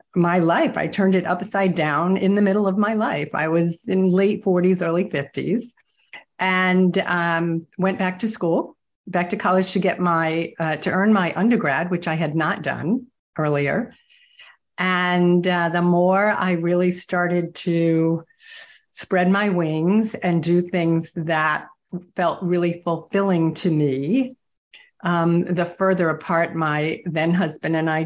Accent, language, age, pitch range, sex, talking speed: American, English, 50-69, 165-200 Hz, female, 155 wpm